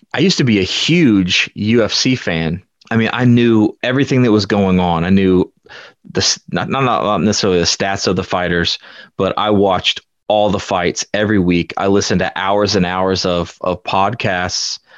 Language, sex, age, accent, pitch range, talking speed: English, male, 30-49, American, 90-105 Hz, 180 wpm